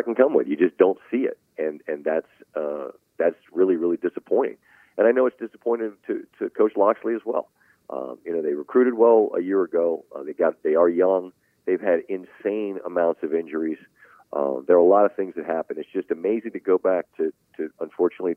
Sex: male